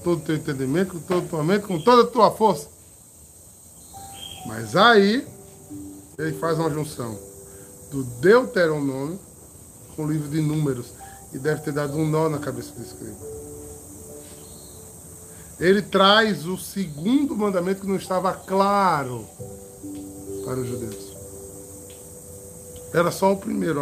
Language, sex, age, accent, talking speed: Portuguese, male, 20-39, Brazilian, 135 wpm